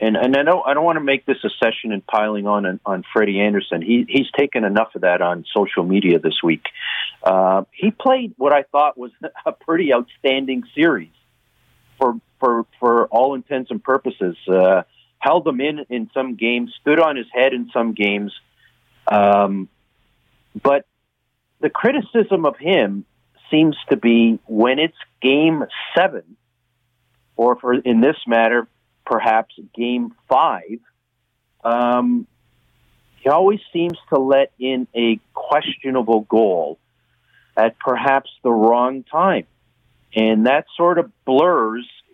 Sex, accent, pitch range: male, American, 115-145 Hz